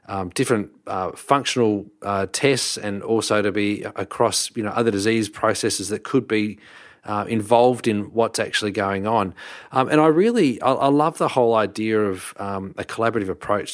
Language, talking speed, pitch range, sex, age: English, 175 wpm, 100-115 Hz, male, 30-49